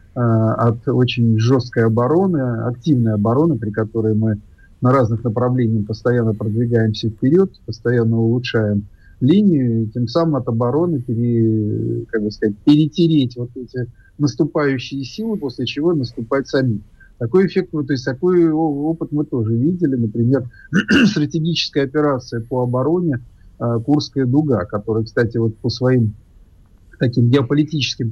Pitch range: 115-145 Hz